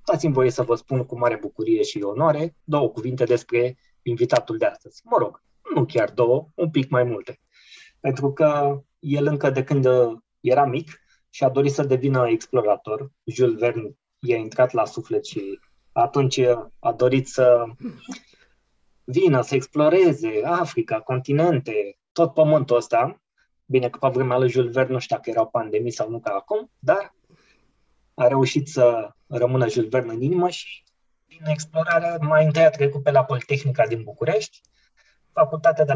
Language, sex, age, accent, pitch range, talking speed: Romanian, male, 20-39, native, 125-160 Hz, 160 wpm